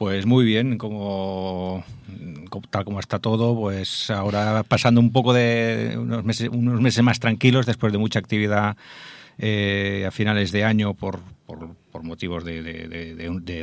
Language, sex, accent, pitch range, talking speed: Spanish, male, Spanish, 95-115 Hz, 165 wpm